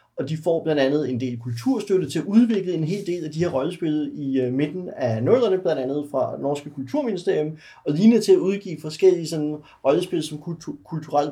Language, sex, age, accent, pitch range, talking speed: Danish, male, 30-49, native, 130-165 Hz, 200 wpm